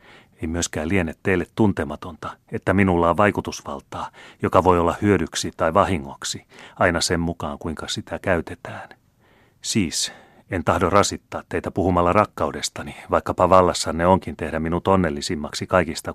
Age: 30-49